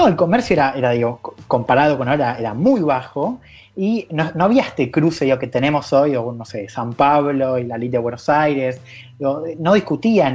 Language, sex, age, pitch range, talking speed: Spanish, male, 30-49, 120-170 Hz, 210 wpm